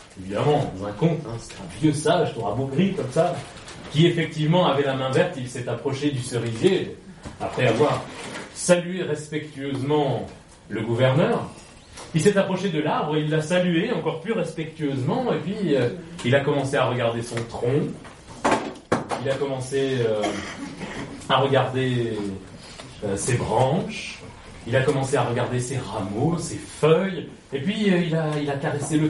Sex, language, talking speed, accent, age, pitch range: male, French, 160 wpm, French, 30-49, 110-160 Hz